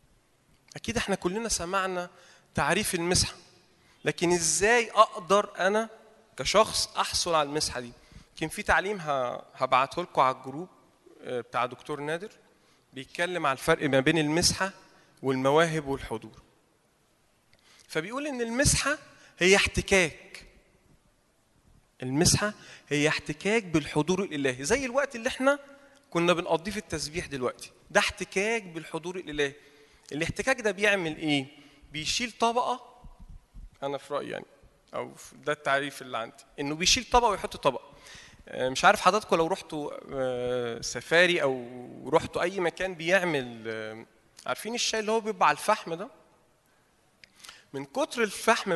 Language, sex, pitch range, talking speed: Arabic, male, 140-200 Hz, 120 wpm